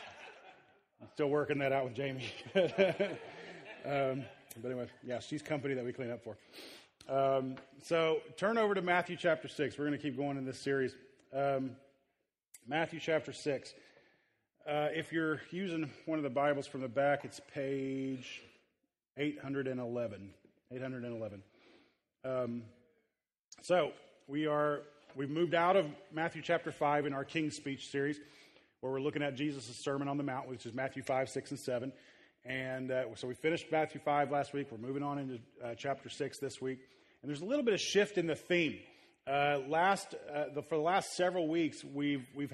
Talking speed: 170 wpm